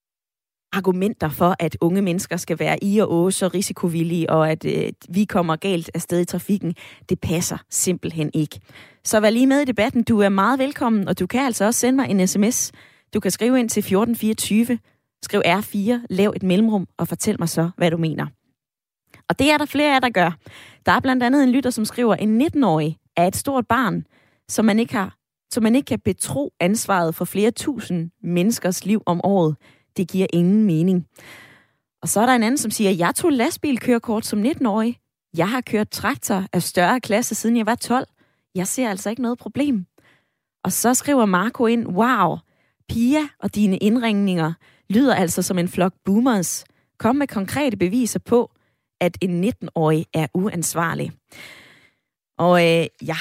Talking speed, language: 185 wpm, Danish